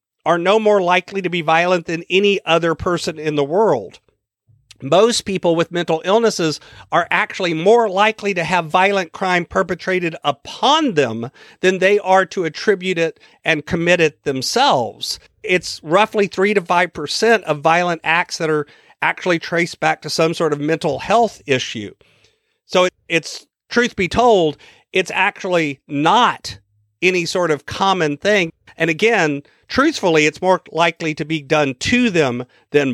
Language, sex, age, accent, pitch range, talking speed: English, male, 50-69, American, 160-200 Hz, 155 wpm